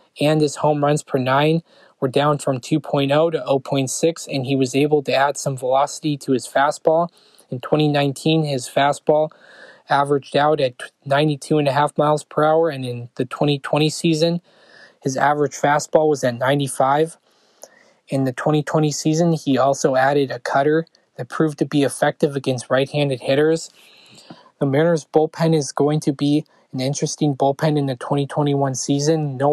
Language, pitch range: English, 140-155 Hz